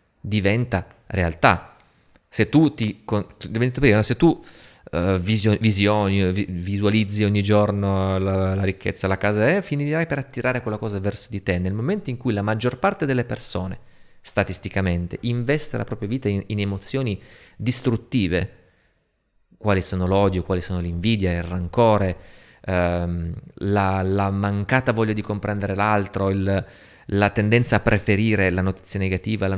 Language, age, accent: Italian, 30-49, native